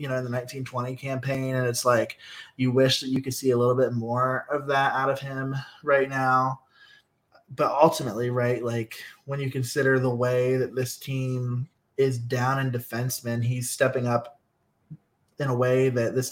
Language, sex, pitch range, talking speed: English, male, 120-135 Hz, 185 wpm